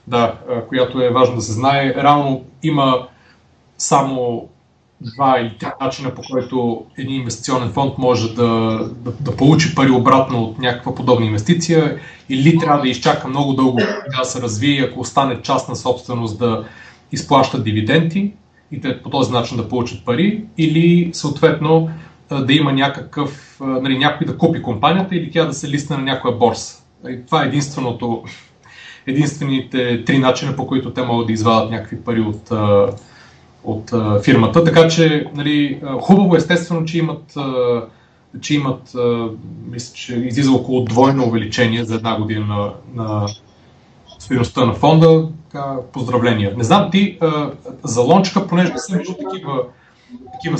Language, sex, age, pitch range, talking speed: Bulgarian, male, 30-49, 120-160 Hz, 150 wpm